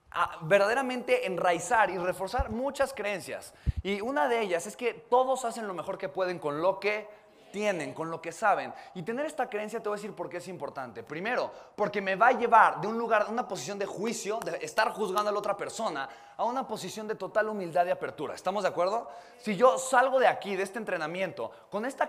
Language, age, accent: Spanish, 20-39, Mexican